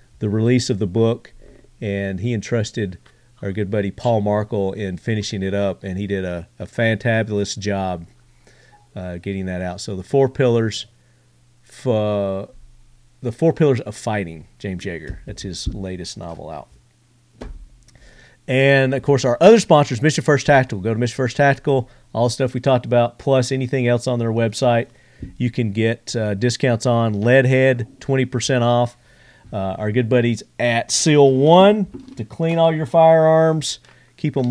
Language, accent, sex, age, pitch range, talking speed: English, American, male, 40-59, 110-135 Hz, 165 wpm